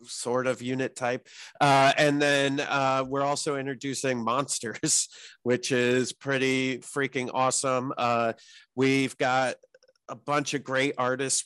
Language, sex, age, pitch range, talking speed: English, male, 30-49, 115-140 Hz, 130 wpm